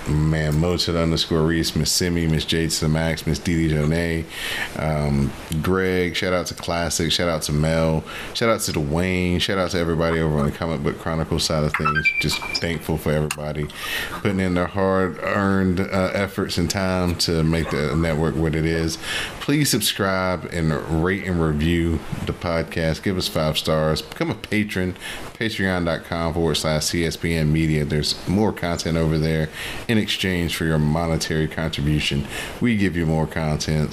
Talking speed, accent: 170 wpm, American